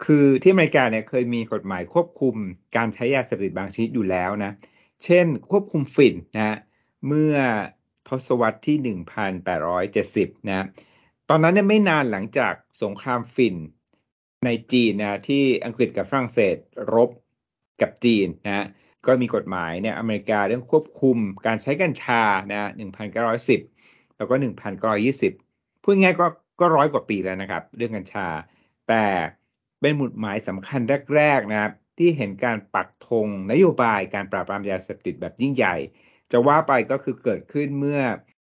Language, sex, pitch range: Thai, male, 105-140 Hz